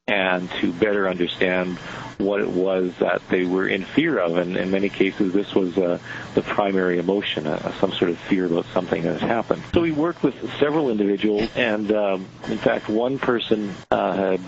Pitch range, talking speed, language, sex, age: 95-110 Hz, 195 wpm, English, male, 50-69